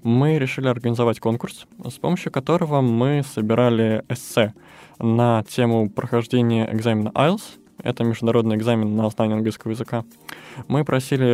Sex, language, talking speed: male, Russian, 125 wpm